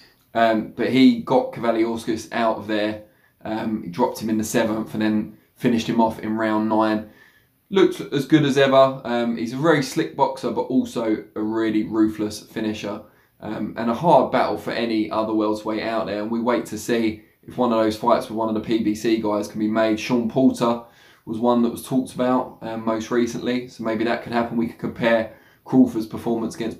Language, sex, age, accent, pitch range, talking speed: English, male, 20-39, British, 110-120 Hz, 205 wpm